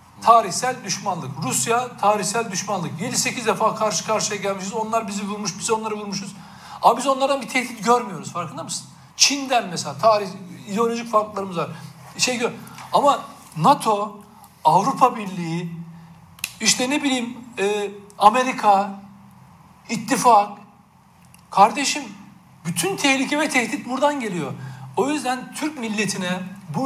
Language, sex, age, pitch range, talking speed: Turkish, male, 60-79, 175-240 Hz, 120 wpm